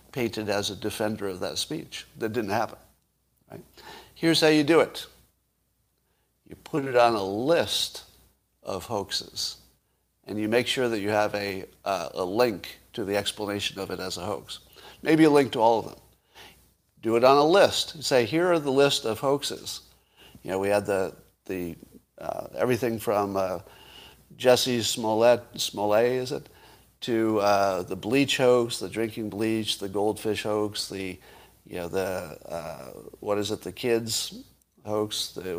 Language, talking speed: English, 170 wpm